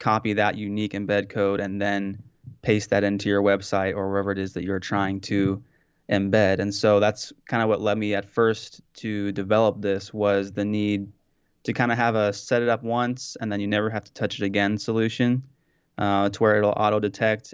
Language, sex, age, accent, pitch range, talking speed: English, male, 20-39, American, 100-110 Hz, 210 wpm